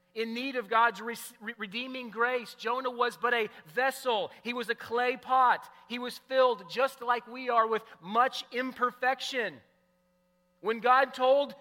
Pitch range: 200-250 Hz